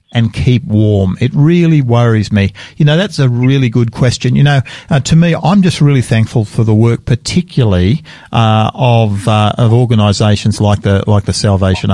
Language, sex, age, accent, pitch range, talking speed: English, male, 50-69, Australian, 105-130 Hz, 185 wpm